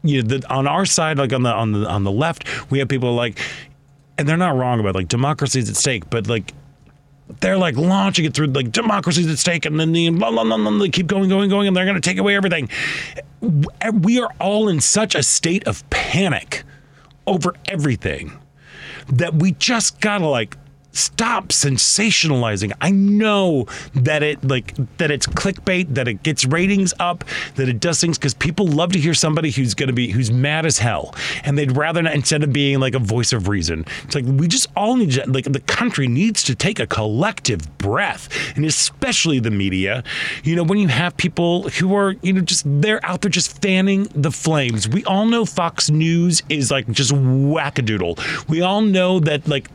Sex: male